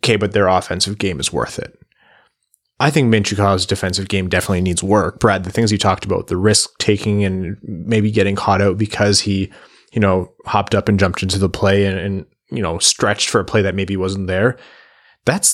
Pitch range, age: 95-115 Hz, 20-39